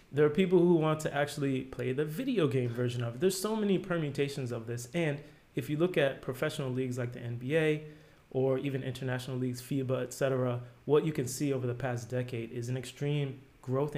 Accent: American